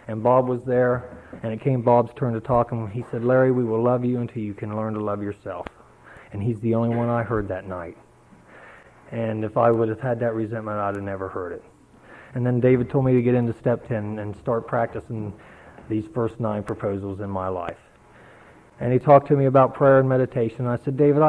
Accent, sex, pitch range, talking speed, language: American, male, 110-135 Hz, 230 wpm, English